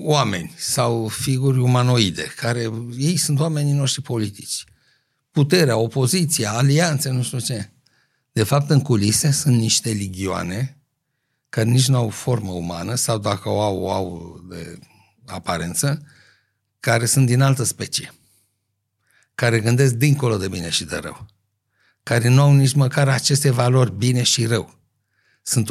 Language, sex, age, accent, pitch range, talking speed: Romanian, male, 60-79, native, 110-145 Hz, 140 wpm